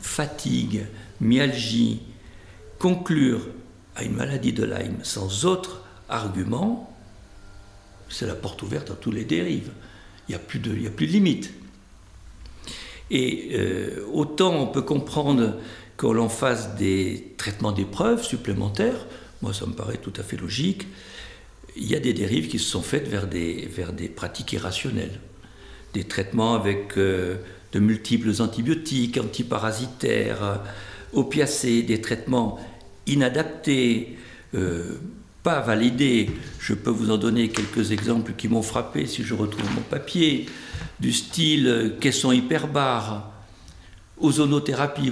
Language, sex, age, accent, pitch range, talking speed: French, male, 60-79, French, 100-140 Hz, 130 wpm